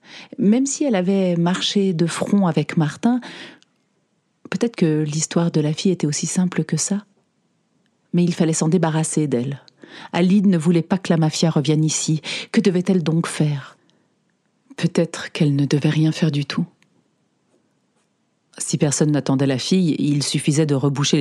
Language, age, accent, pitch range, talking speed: French, 40-59, French, 155-195 Hz, 160 wpm